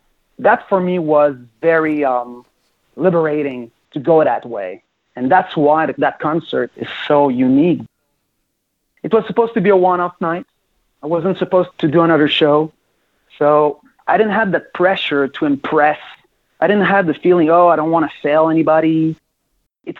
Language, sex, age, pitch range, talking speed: English, male, 30-49, 140-175 Hz, 165 wpm